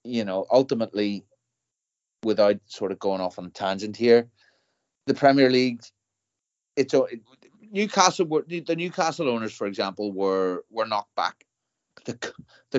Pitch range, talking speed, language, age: 100-140 Hz, 135 wpm, English, 30-49